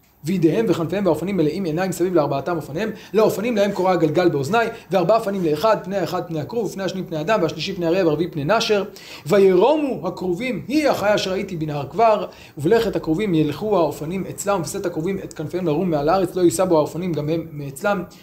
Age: 30-49